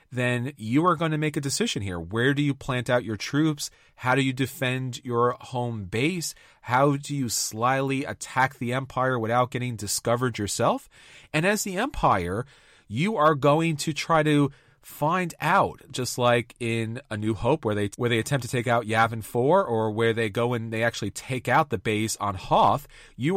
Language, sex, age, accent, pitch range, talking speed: English, male, 30-49, American, 120-160 Hz, 195 wpm